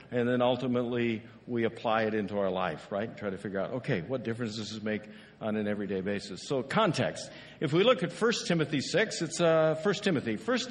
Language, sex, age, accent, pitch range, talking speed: English, male, 60-79, American, 120-165 Hz, 215 wpm